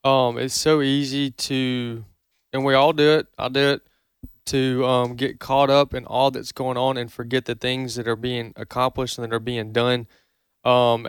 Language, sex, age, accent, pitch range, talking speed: English, male, 20-39, American, 120-135 Hz, 200 wpm